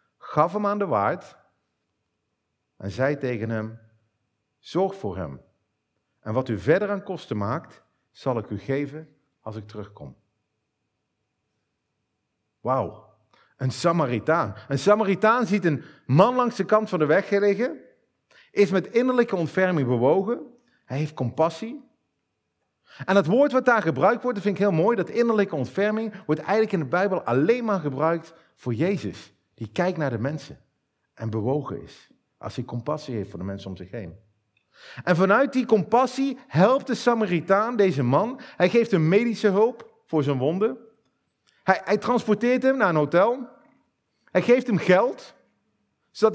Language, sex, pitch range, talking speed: Dutch, male, 135-210 Hz, 155 wpm